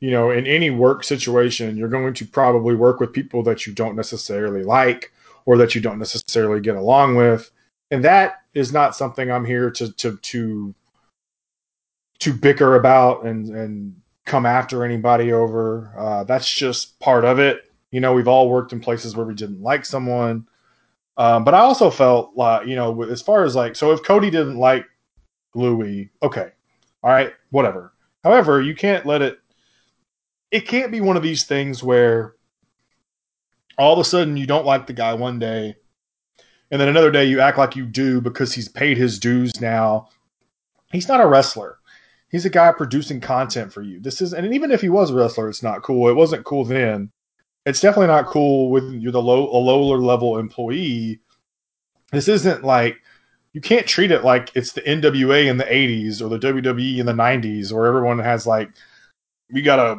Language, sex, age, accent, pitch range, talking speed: English, male, 20-39, American, 115-140 Hz, 190 wpm